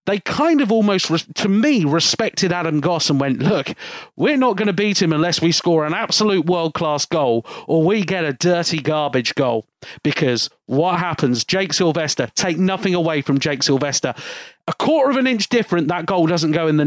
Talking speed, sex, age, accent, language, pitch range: 195 wpm, male, 40-59, British, English, 155-205 Hz